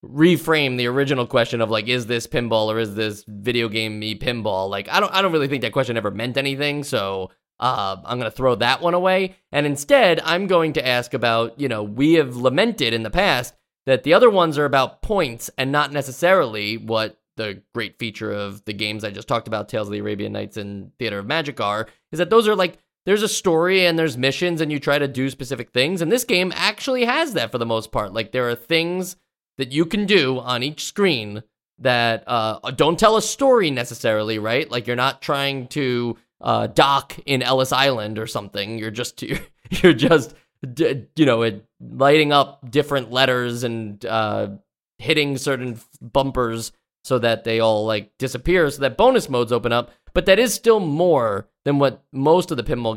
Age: 20-39